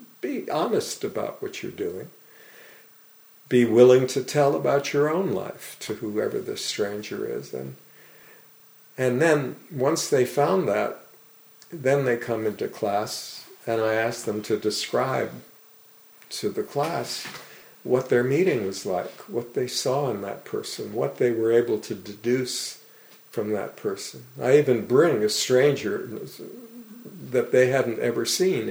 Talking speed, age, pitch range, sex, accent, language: 145 wpm, 50-69, 110-140 Hz, male, American, English